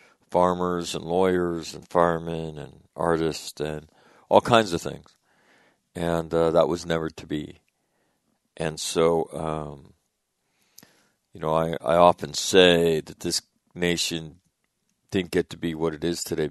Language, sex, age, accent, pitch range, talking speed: English, male, 50-69, American, 80-90 Hz, 140 wpm